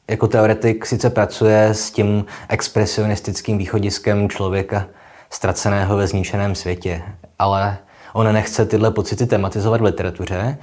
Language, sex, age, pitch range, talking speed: Czech, male, 20-39, 95-105 Hz, 120 wpm